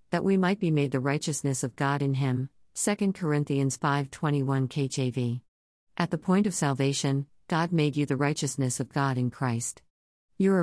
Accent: American